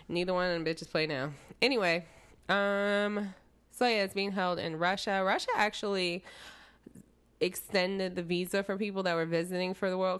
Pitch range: 160-195 Hz